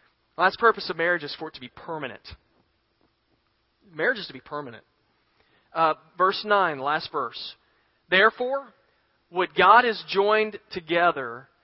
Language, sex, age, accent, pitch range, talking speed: English, male, 40-59, American, 170-215 Hz, 135 wpm